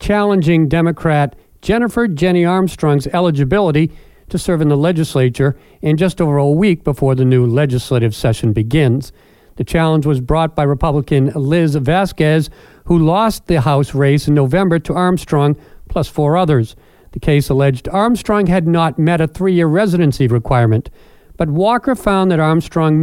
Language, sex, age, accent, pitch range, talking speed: English, male, 50-69, American, 140-195 Hz, 150 wpm